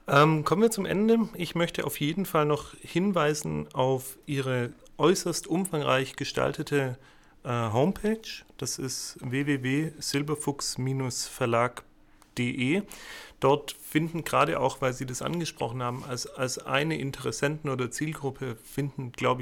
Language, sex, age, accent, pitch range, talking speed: English, male, 30-49, German, 130-155 Hz, 120 wpm